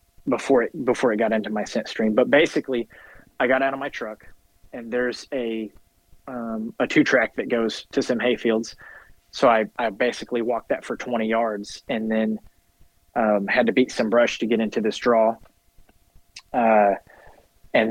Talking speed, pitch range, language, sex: 180 wpm, 110-120 Hz, English, male